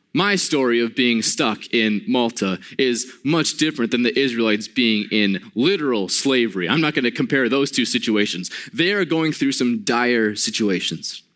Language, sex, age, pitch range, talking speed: English, male, 20-39, 110-155 Hz, 170 wpm